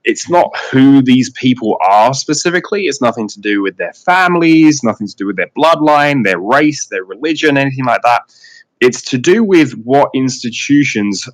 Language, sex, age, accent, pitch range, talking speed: English, male, 20-39, British, 95-130 Hz, 175 wpm